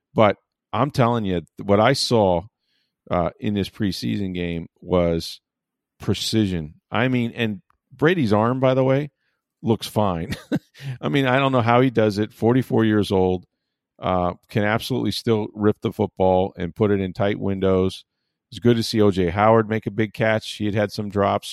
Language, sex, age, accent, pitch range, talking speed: English, male, 40-59, American, 95-115 Hz, 180 wpm